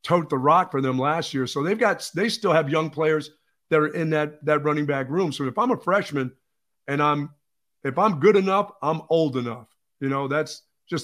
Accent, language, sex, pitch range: American, English, male, 135-155 Hz